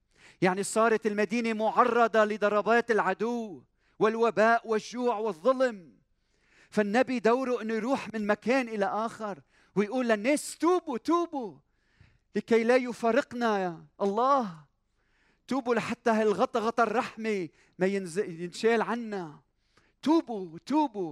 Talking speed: 100 wpm